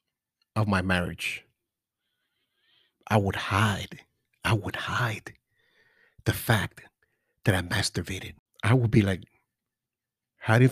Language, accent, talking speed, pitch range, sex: English, American, 105 wpm, 100-130 Hz, male